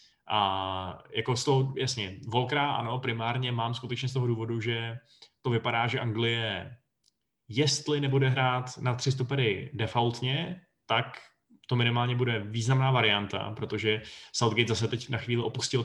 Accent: native